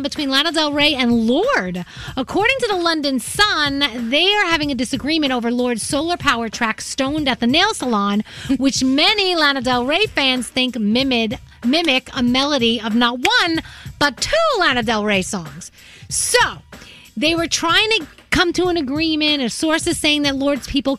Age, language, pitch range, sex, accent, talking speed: 40-59, English, 225-310 Hz, female, American, 175 wpm